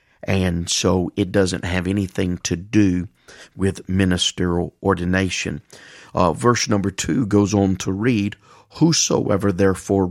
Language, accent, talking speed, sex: English, American, 125 wpm, male